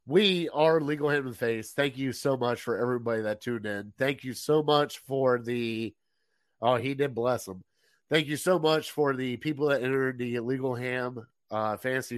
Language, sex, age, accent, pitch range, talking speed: English, male, 30-49, American, 115-140 Hz, 200 wpm